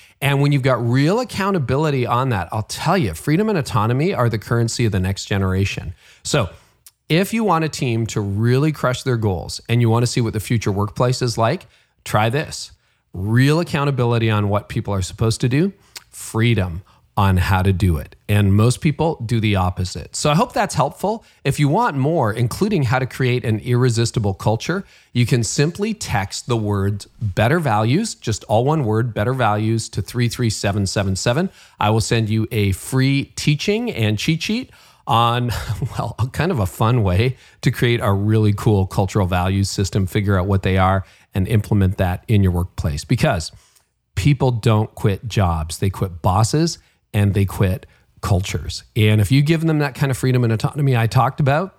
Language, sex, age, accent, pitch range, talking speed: English, male, 40-59, American, 100-130 Hz, 185 wpm